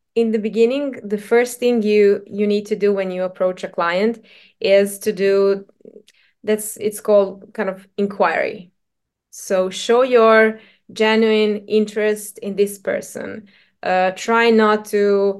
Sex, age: female, 20-39